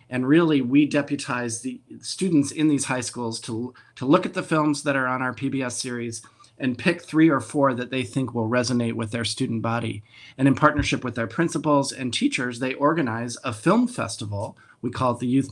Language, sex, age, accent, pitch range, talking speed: English, male, 40-59, American, 115-140 Hz, 210 wpm